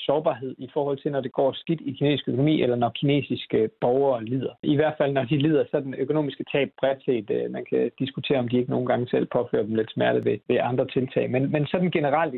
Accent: native